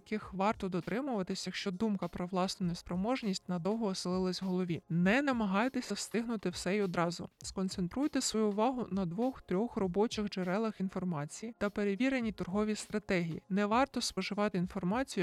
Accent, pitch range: native, 185-215 Hz